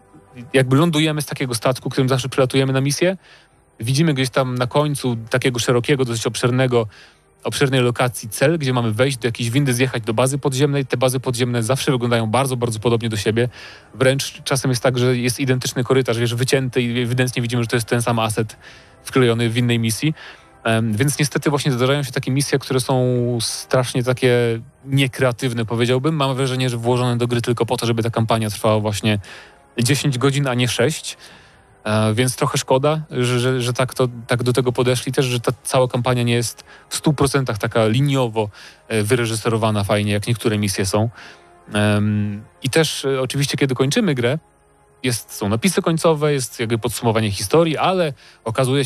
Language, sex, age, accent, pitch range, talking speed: Polish, male, 30-49, native, 115-135 Hz, 175 wpm